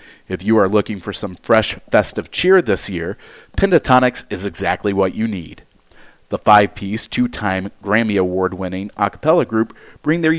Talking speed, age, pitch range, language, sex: 155 wpm, 40-59, 95-125 Hz, English, male